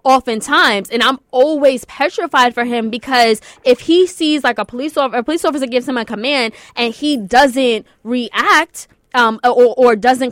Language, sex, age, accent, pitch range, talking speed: English, female, 20-39, American, 230-285 Hz, 175 wpm